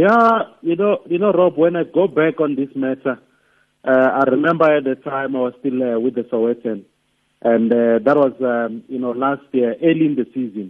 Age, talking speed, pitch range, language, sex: 50-69, 220 wpm, 115-140 Hz, English, male